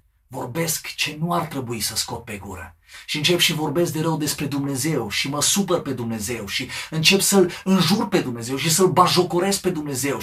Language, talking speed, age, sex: Romanian, 195 wpm, 40-59, male